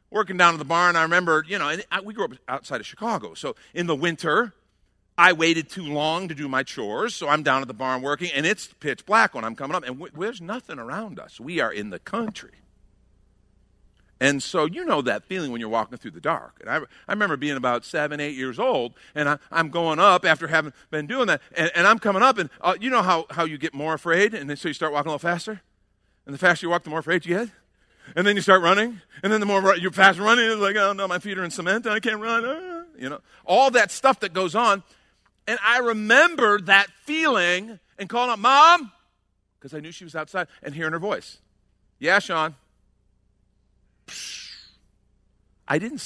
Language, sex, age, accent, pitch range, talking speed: English, male, 50-69, American, 150-210 Hz, 225 wpm